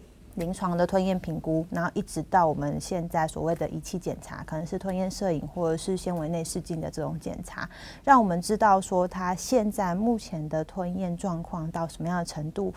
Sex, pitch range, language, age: female, 165-210 Hz, Chinese, 30-49